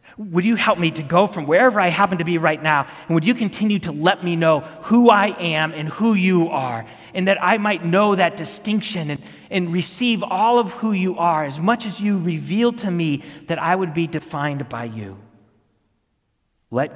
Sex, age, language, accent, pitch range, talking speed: male, 40-59, English, American, 125-175 Hz, 210 wpm